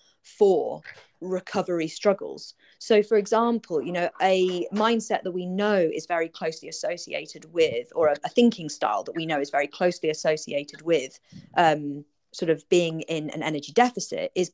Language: English